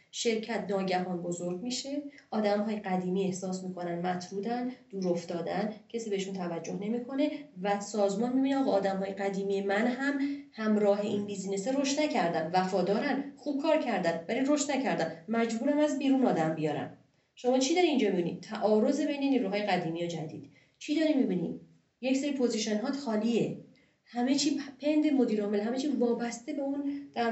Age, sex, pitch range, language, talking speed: 30-49, female, 200-280 Hz, Persian, 150 wpm